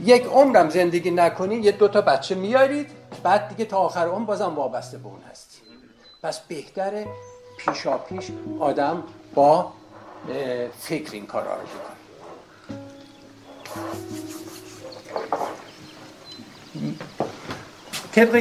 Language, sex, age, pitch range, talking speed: Persian, male, 50-69, 135-200 Hz, 110 wpm